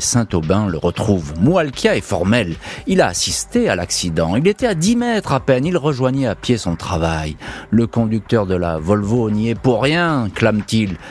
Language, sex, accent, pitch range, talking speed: French, male, French, 95-135 Hz, 185 wpm